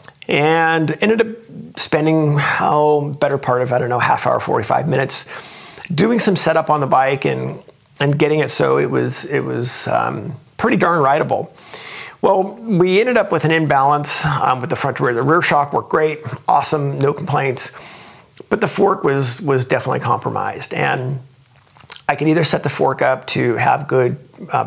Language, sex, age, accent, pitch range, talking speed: English, male, 50-69, American, 130-160 Hz, 180 wpm